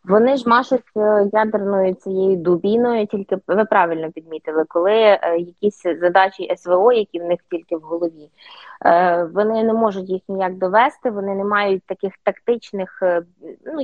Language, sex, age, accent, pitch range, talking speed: Ukrainian, female, 20-39, native, 175-220 Hz, 140 wpm